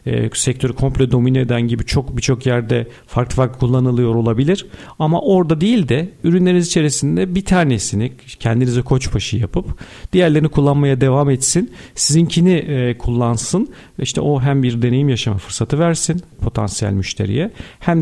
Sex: male